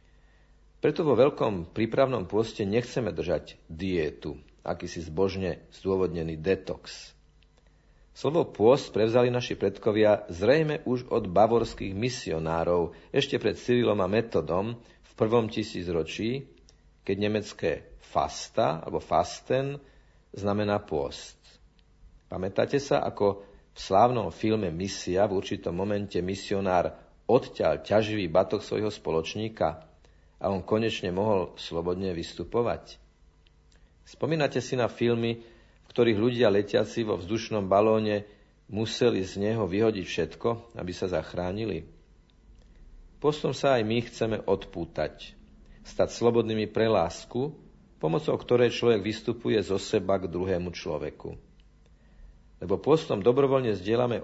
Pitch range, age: 85-115 Hz, 50-69